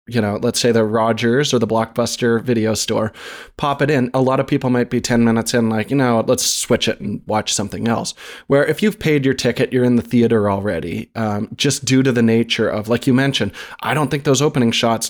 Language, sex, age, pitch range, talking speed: English, male, 20-39, 110-130 Hz, 240 wpm